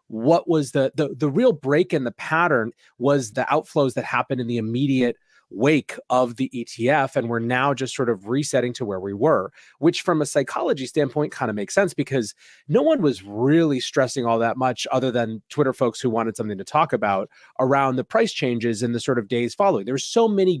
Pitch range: 115-140 Hz